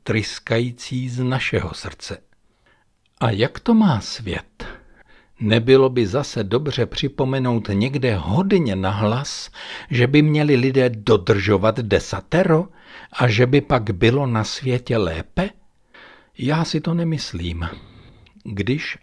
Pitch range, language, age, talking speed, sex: 105-135 Hz, Czech, 60-79, 115 wpm, male